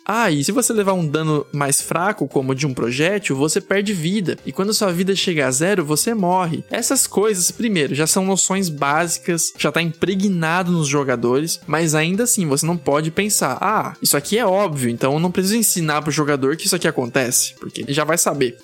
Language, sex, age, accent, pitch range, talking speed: Portuguese, male, 20-39, Brazilian, 145-195 Hz, 215 wpm